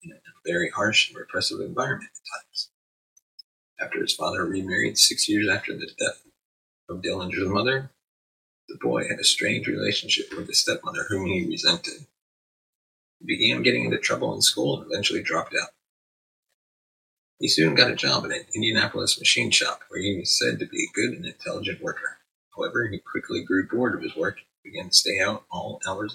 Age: 30-49